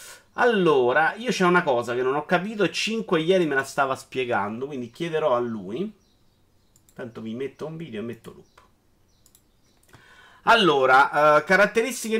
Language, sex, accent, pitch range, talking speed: Italian, male, native, 150-205 Hz, 150 wpm